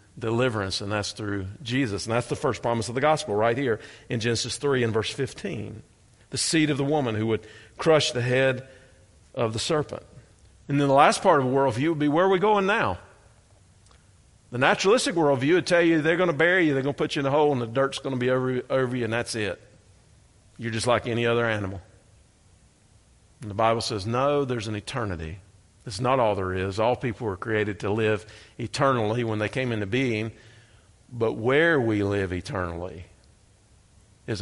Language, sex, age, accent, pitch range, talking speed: English, male, 50-69, American, 105-135 Hz, 205 wpm